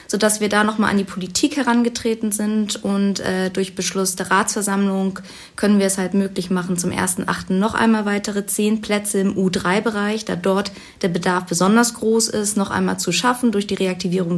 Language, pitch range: German, 190-220 Hz